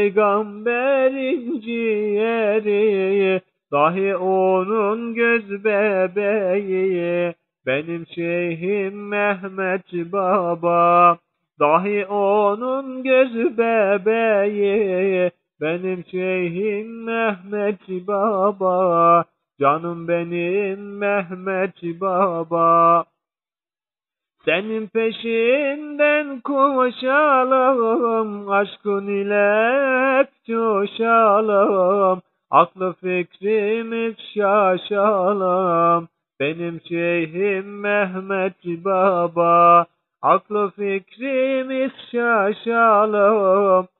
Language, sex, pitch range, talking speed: Turkish, male, 175-215 Hz, 55 wpm